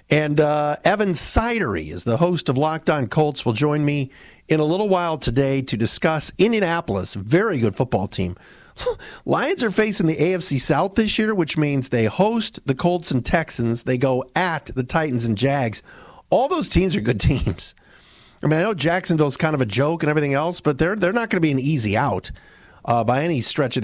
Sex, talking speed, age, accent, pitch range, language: male, 205 wpm, 40-59, American, 115-165 Hz, English